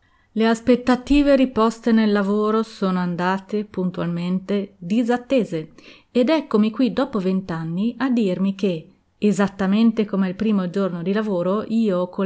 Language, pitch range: Italian, 185-235 Hz